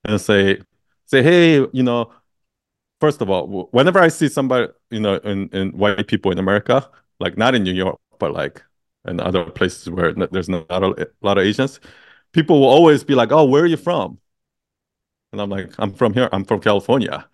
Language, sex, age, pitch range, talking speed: English, male, 30-49, 110-155 Hz, 210 wpm